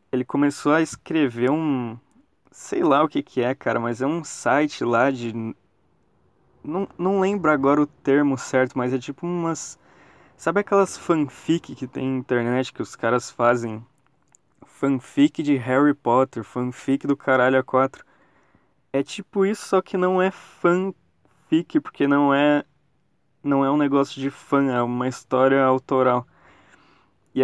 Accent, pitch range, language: Brazilian, 130-155 Hz, Portuguese